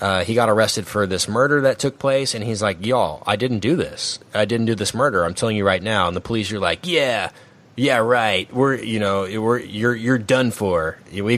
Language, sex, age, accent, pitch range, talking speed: English, male, 30-49, American, 95-120 Hz, 235 wpm